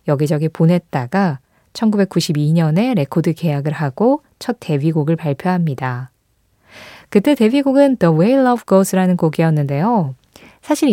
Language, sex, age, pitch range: Korean, female, 20-39, 155-220 Hz